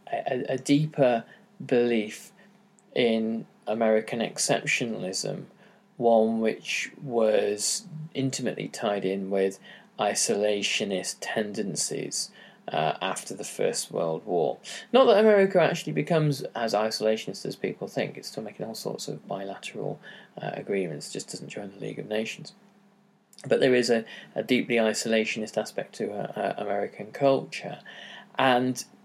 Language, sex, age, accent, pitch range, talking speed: English, male, 20-39, British, 105-155 Hz, 130 wpm